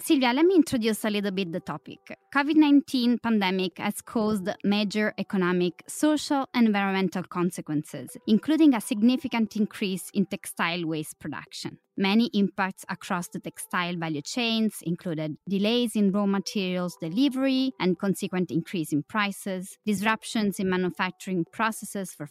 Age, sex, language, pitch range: 20-39, female, Italian, 175-240 Hz